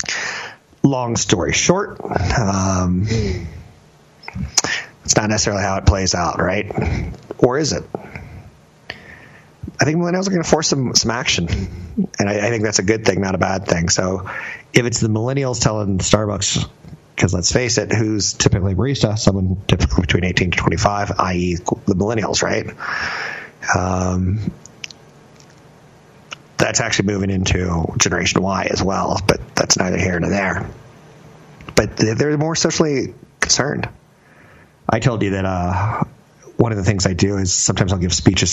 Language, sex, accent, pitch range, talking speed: English, male, American, 90-110 Hz, 150 wpm